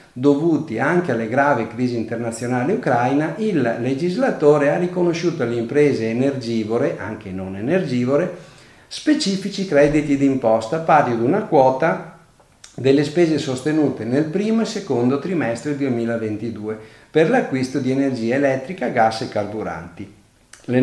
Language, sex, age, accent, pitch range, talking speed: Italian, male, 50-69, native, 115-155 Hz, 120 wpm